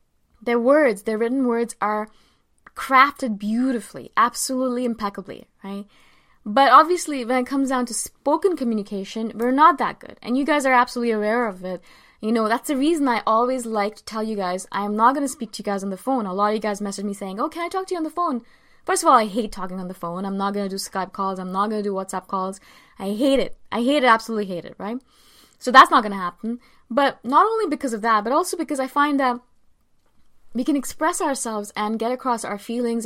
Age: 20-39